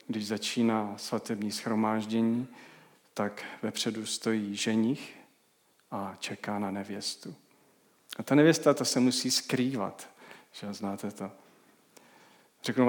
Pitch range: 105-130 Hz